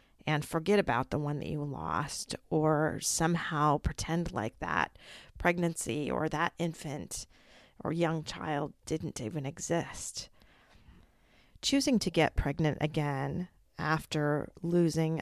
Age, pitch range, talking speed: 40-59, 150-180 Hz, 120 wpm